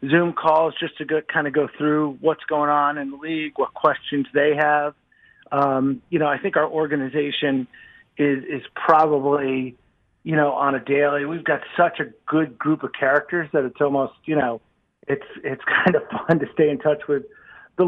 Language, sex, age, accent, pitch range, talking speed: English, male, 40-59, American, 140-155 Hz, 195 wpm